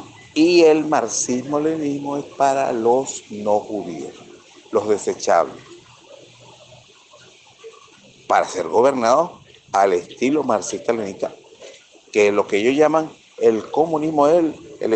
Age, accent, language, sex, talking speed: 60-79, Venezuelan, Spanish, male, 100 wpm